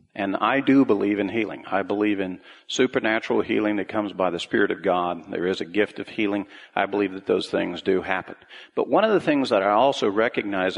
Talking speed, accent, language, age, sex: 225 wpm, American, English, 50-69, male